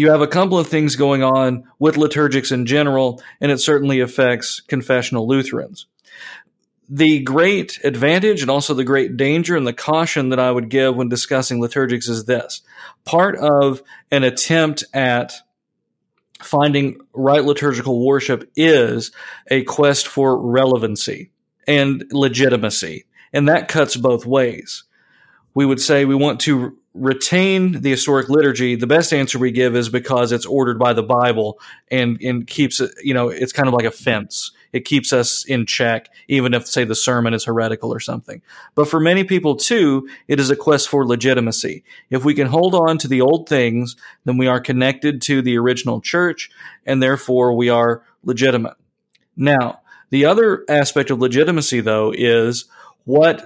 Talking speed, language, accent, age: 165 wpm, English, American, 40-59